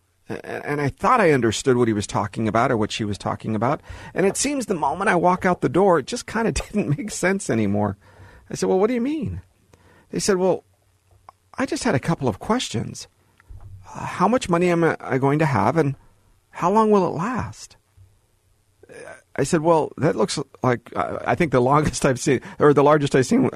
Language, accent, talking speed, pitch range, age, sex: English, American, 210 wpm, 105-165 Hz, 50-69, male